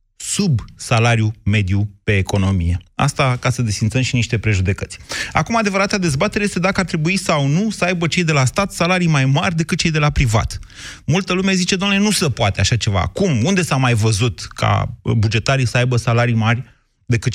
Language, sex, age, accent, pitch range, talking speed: Romanian, male, 30-49, native, 110-155 Hz, 195 wpm